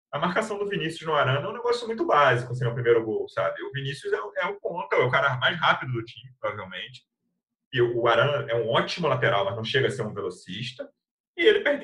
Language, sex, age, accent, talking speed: Portuguese, male, 30-49, Brazilian, 240 wpm